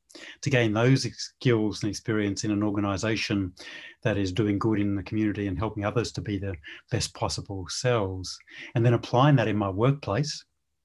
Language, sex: English, male